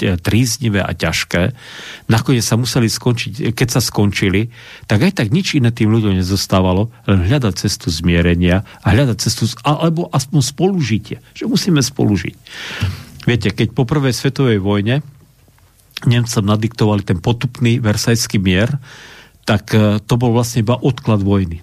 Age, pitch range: 50-69, 95-120 Hz